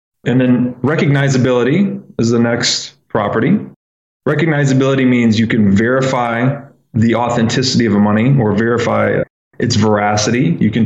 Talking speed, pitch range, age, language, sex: 125 wpm, 105-135 Hz, 20-39, English, male